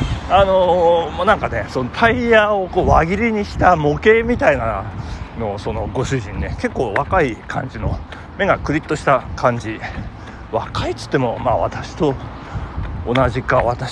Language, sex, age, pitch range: Japanese, male, 40-59, 100-160 Hz